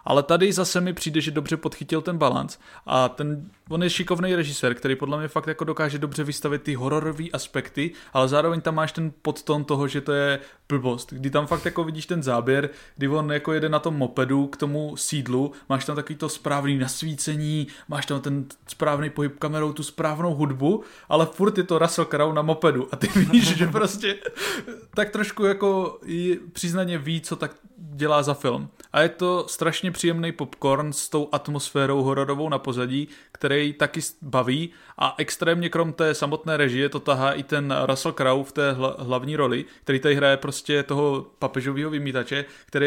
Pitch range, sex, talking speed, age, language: 140-160 Hz, male, 190 wpm, 20-39, Czech